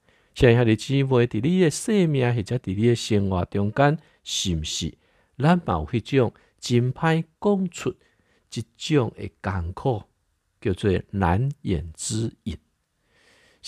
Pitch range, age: 95-135 Hz, 50-69